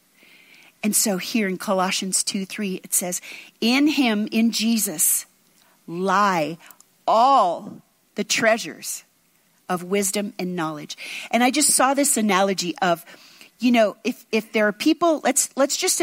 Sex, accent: female, American